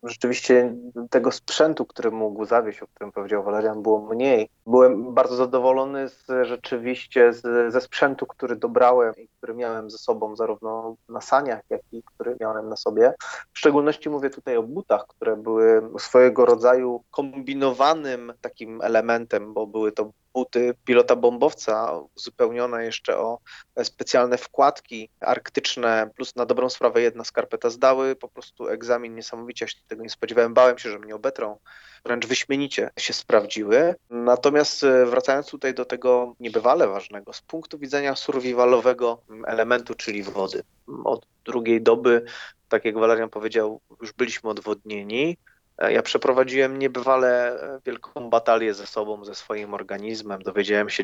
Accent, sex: native, male